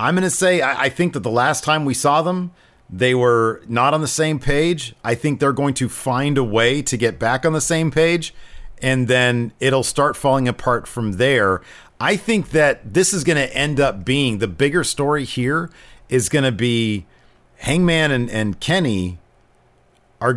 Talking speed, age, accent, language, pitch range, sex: 195 wpm, 40-59, American, English, 115-150 Hz, male